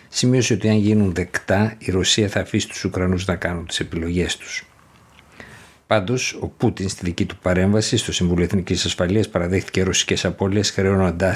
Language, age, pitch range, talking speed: Greek, 60-79, 90-105 Hz, 165 wpm